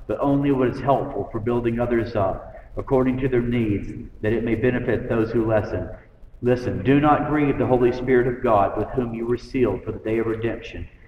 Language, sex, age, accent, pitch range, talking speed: English, male, 50-69, American, 100-125 Hz, 210 wpm